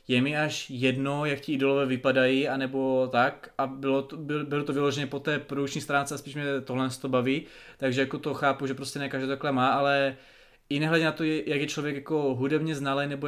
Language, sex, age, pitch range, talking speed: Czech, male, 20-39, 140-150 Hz, 215 wpm